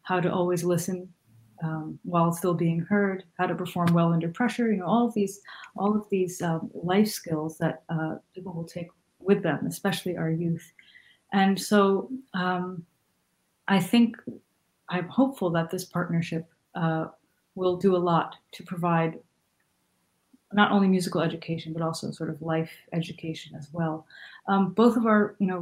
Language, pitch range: English, 165-195 Hz